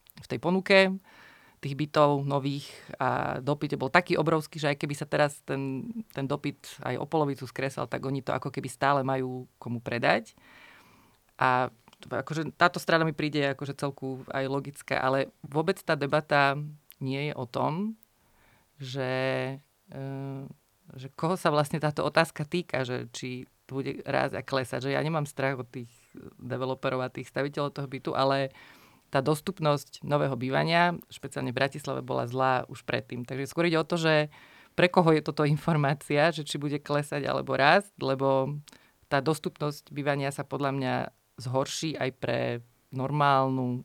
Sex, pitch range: female, 135-155 Hz